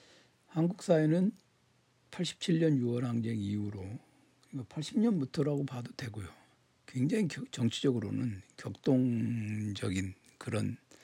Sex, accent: male, native